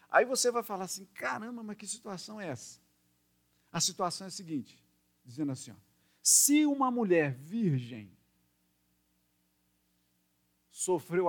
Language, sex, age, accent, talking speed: Portuguese, male, 50-69, Brazilian, 120 wpm